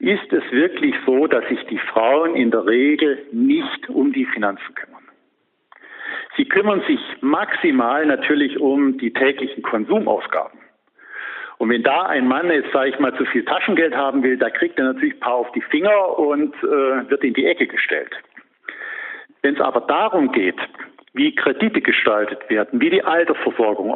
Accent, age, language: German, 50-69, German